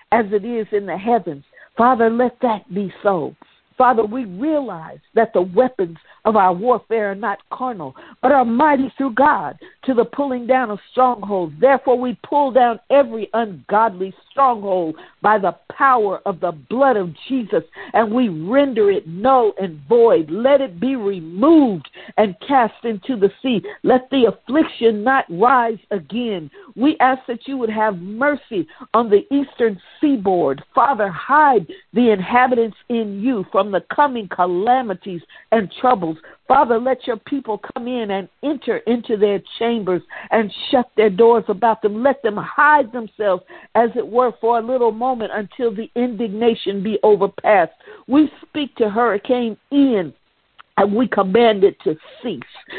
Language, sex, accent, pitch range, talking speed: English, female, American, 205-260 Hz, 155 wpm